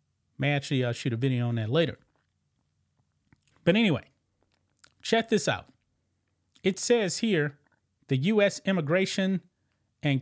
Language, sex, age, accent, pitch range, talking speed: English, male, 30-49, American, 125-195 Hz, 125 wpm